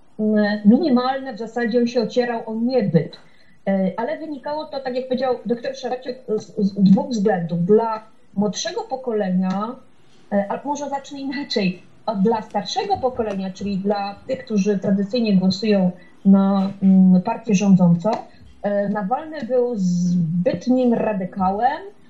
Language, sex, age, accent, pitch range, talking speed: Polish, female, 30-49, native, 200-245 Hz, 115 wpm